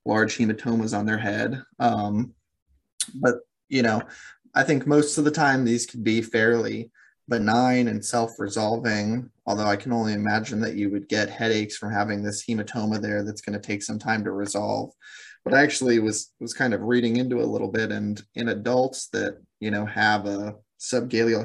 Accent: American